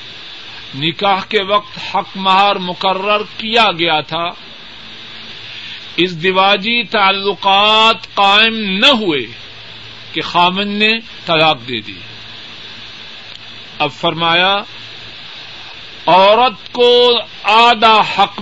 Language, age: Urdu, 50-69